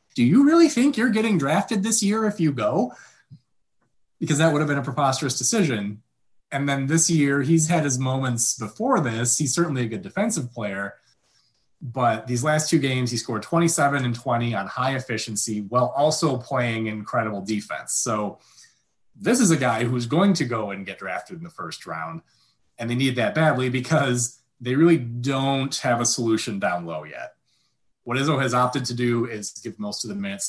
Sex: male